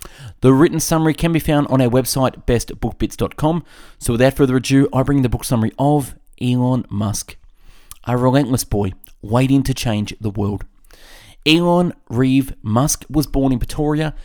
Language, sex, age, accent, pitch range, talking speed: English, male, 20-39, Australian, 110-150 Hz, 155 wpm